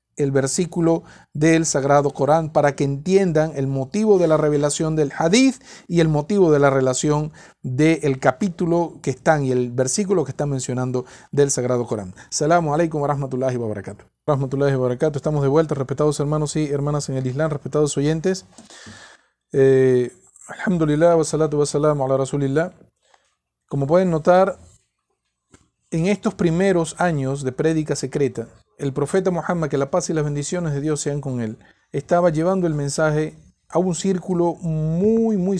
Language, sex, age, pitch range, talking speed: Spanish, male, 40-59, 130-170 Hz, 155 wpm